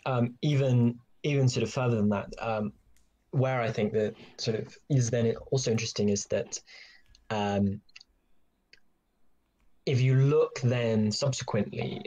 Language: English